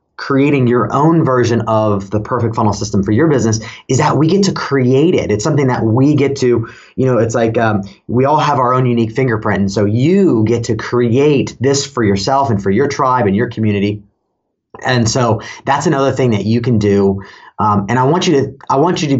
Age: 30-49